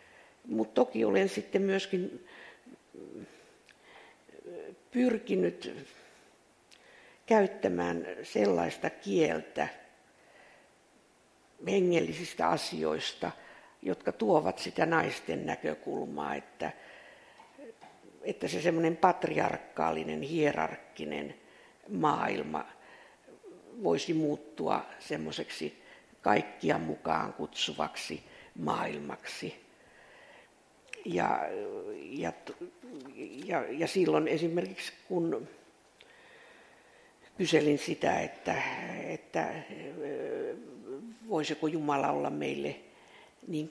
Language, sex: Finnish, female